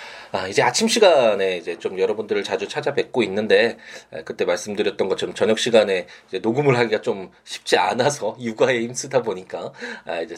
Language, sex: Korean, male